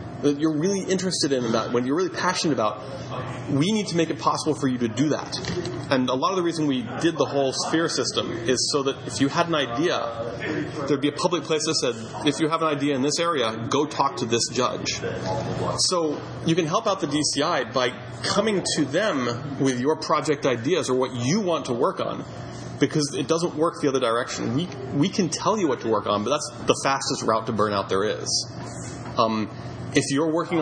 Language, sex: English, male